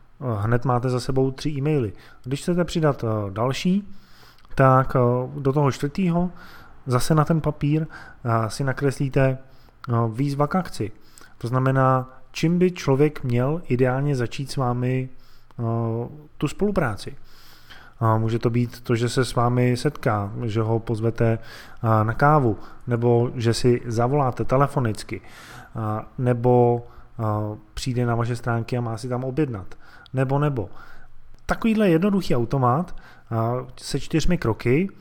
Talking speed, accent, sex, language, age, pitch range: 125 wpm, native, male, Czech, 20-39, 115-140 Hz